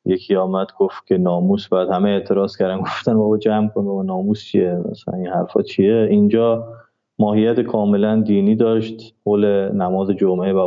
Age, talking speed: 30-49, 155 wpm